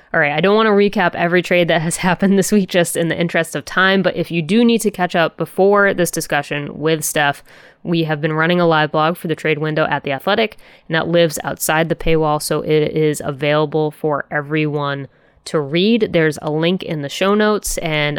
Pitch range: 145-175 Hz